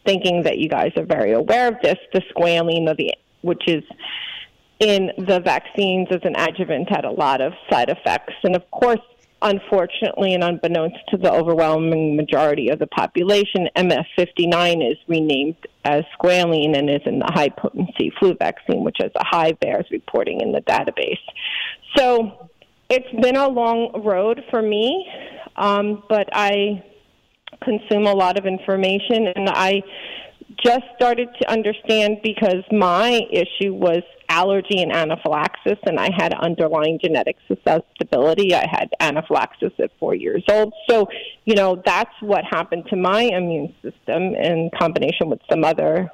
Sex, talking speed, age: female, 155 wpm, 30-49